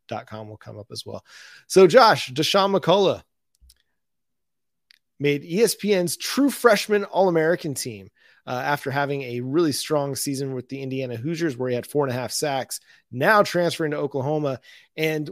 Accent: American